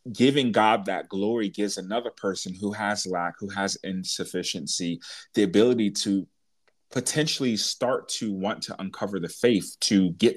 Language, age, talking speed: English, 30-49, 150 wpm